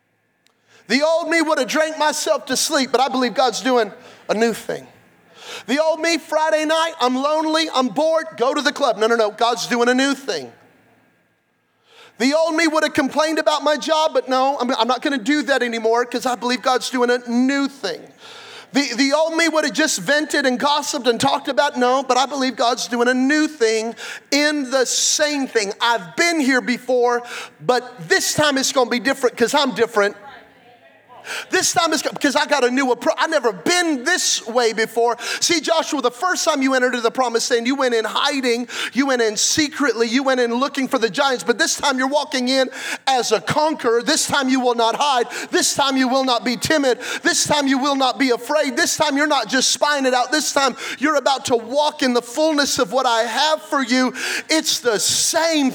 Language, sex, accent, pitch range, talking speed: English, male, American, 245-300 Hz, 215 wpm